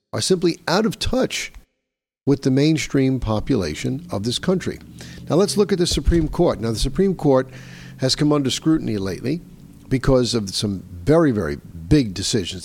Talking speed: 165 wpm